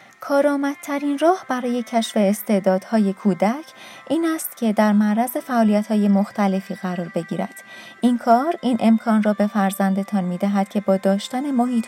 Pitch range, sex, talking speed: 195-255 Hz, female, 135 wpm